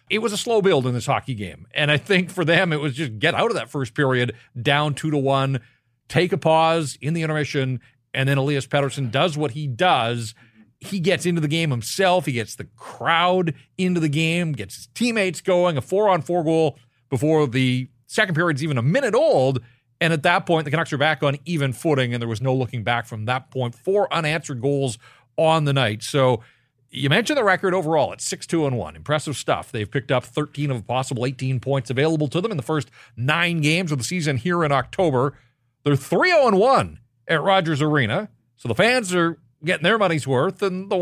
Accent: American